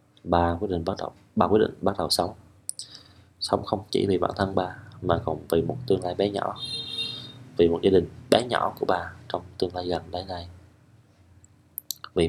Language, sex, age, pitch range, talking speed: Vietnamese, male, 20-39, 85-105 Hz, 180 wpm